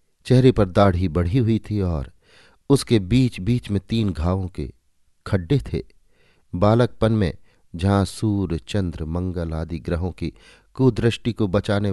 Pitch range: 85-110 Hz